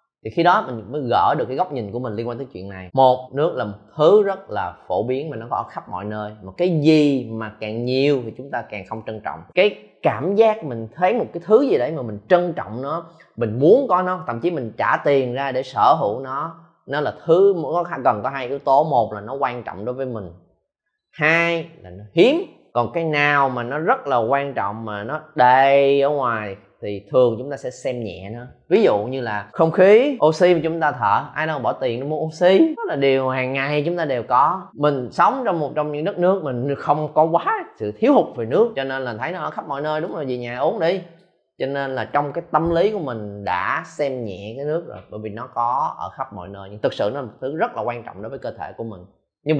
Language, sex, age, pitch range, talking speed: Vietnamese, male, 20-39, 110-155 Hz, 265 wpm